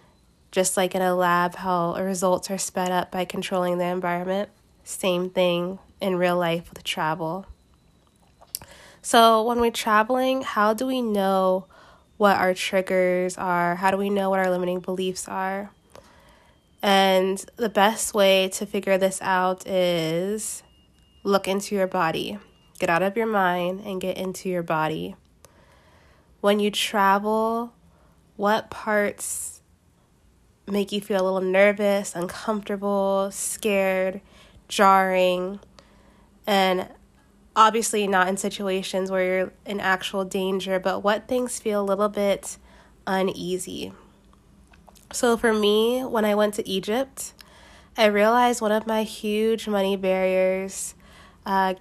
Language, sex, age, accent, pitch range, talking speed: English, female, 20-39, American, 185-210 Hz, 130 wpm